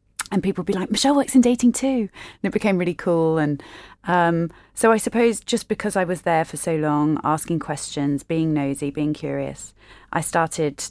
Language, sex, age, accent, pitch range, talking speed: English, female, 30-49, British, 150-175 Hz, 200 wpm